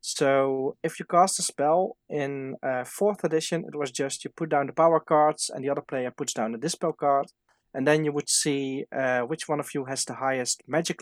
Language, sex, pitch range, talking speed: English, male, 130-165 Hz, 230 wpm